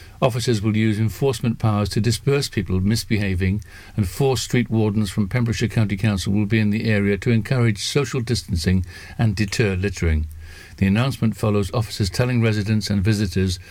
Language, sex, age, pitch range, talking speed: English, male, 60-79, 95-120 Hz, 160 wpm